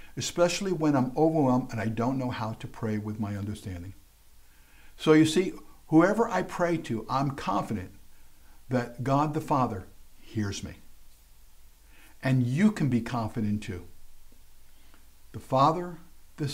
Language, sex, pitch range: English, male, 100-140 Hz